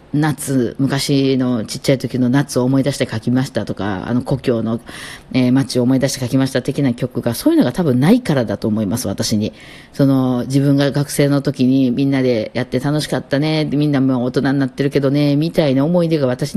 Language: Japanese